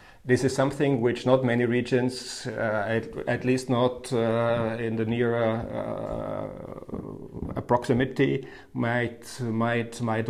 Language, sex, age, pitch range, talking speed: English, male, 50-69, 115-130 Hz, 130 wpm